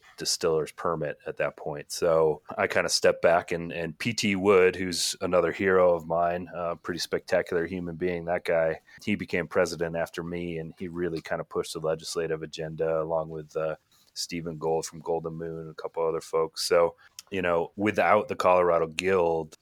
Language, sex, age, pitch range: English, male, 30-49, 80-100 Hz